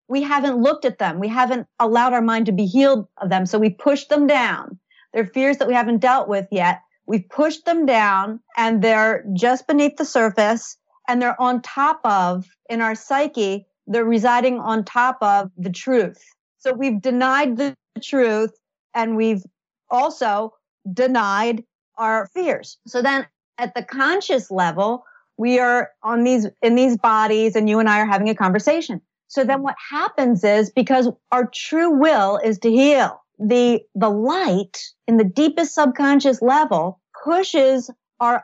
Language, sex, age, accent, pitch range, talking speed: English, female, 50-69, American, 220-275 Hz, 165 wpm